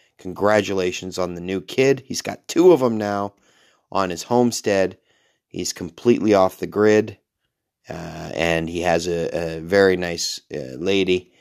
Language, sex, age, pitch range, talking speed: English, male, 30-49, 90-110 Hz, 155 wpm